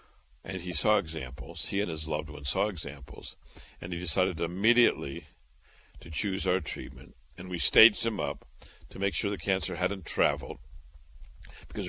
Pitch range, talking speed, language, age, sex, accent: 70-95 Hz, 160 wpm, English, 60-79, male, American